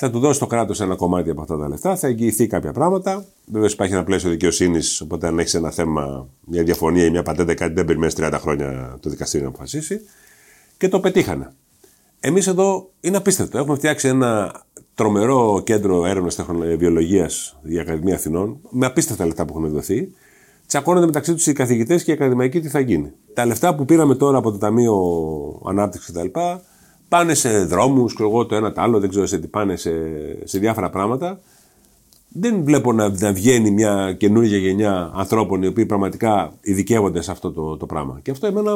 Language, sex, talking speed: Greek, male, 190 wpm